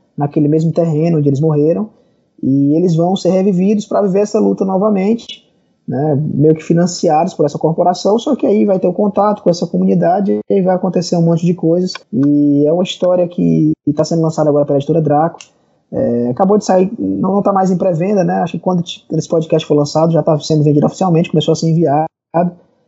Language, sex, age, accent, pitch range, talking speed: Portuguese, male, 20-39, Brazilian, 140-180 Hz, 210 wpm